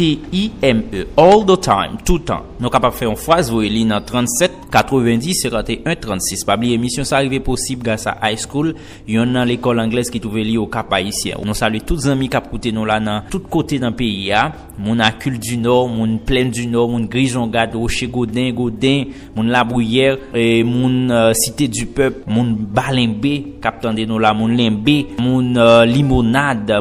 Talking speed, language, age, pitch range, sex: 180 wpm, English, 30-49, 110-130 Hz, male